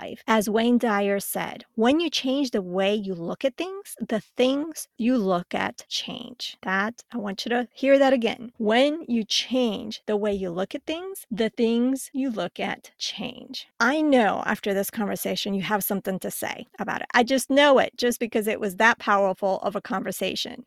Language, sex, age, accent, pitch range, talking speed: English, female, 30-49, American, 200-245 Hz, 195 wpm